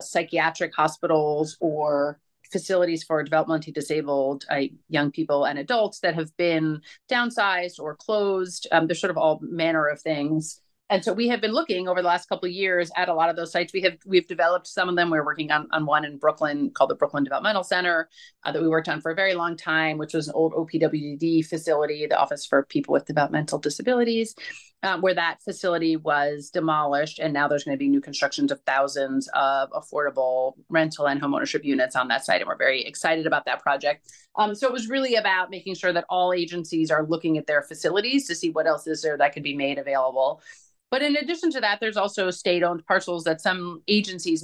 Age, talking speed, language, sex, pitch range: 30-49, 215 wpm, English, female, 150-180 Hz